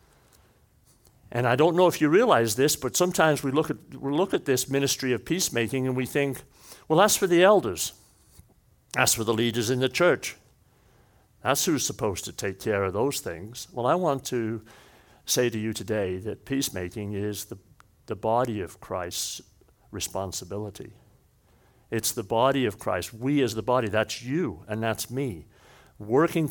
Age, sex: 60-79, male